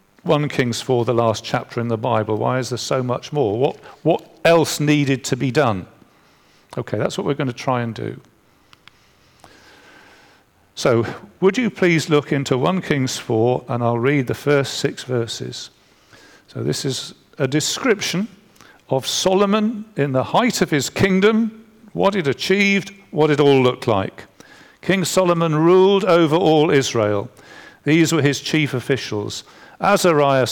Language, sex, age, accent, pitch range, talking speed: English, male, 50-69, British, 135-175 Hz, 155 wpm